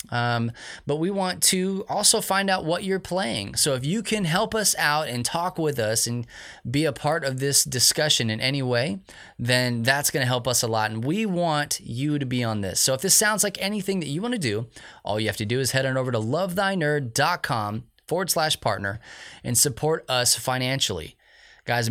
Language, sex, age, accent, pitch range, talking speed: English, male, 20-39, American, 115-155 Hz, 210 wpm